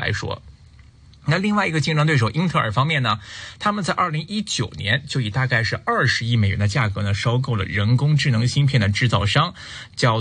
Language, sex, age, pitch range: Chinese, male, 20-39, 105-150 Hz